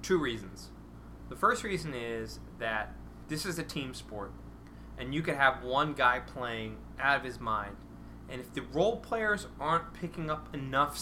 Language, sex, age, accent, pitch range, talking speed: English, male, 20-39, American, 110-155 Hz, 175 wpm